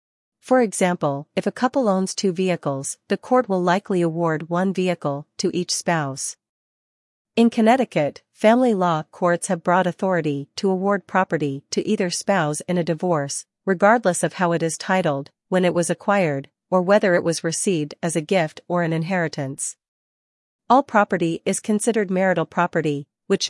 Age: 40-59